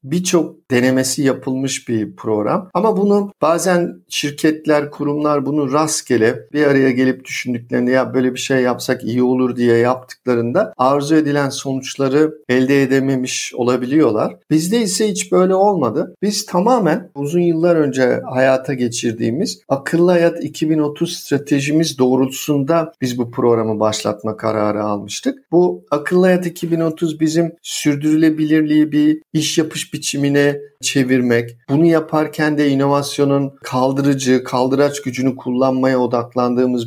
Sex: male